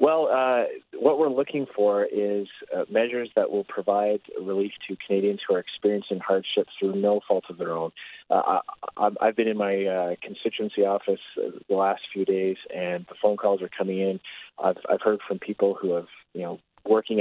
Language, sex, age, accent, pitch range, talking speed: English, male, 30-49, American, 95-115 Hz, 190 wpm